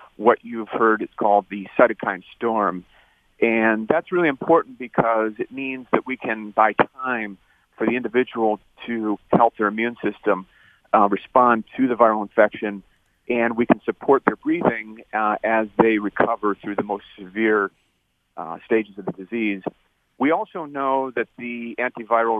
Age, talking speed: 40-59, 160 wpm